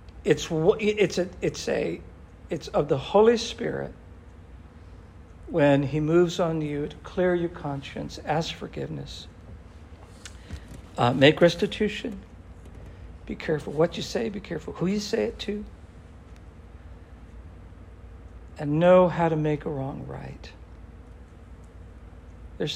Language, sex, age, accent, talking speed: English, male, 60-79, American, 120 wpm